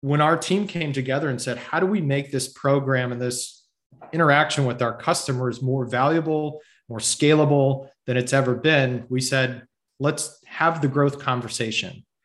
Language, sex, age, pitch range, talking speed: English, male, 30-49, 125-155 Hz, 165 wpm